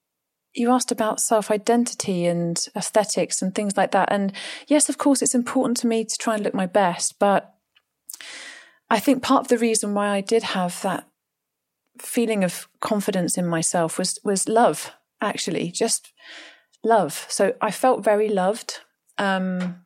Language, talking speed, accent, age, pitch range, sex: English, 160 wpm, British, 30-49, 180-225 Hz, female